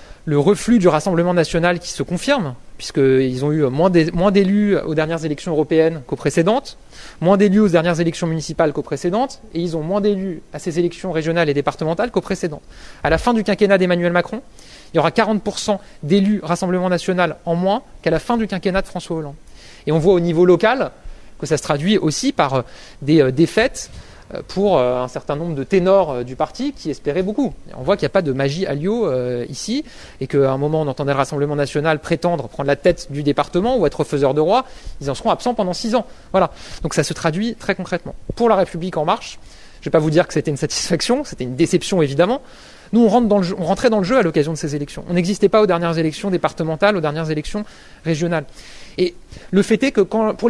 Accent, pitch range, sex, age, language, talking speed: French, 155-200 Hz, male, 20-39, French, 215 wpm